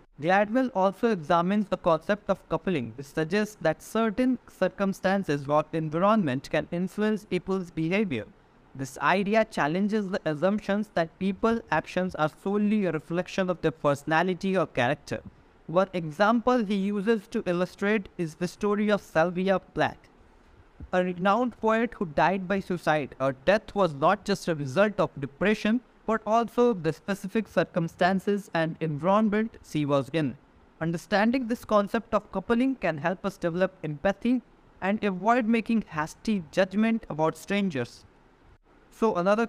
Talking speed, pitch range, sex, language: 140 wpm, 160-210 Hz, male, English